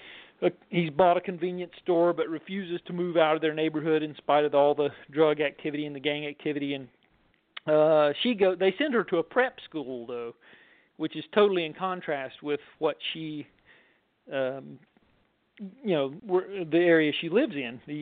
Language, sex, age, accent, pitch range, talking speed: English, male, 40-59, American, 145-170 Hz, 170 wpm